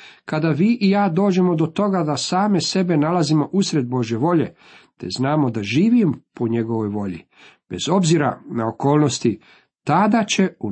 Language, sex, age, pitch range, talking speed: Croatian, male, 50-69, 115-165 Hz, 155 wpm